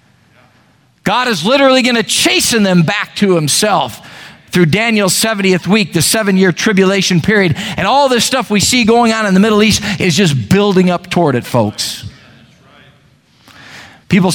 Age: 50-69